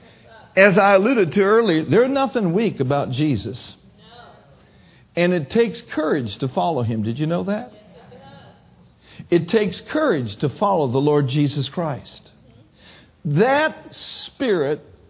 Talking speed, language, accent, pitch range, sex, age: 125 wpm, English, American, 115-185 Hz, male, 60-79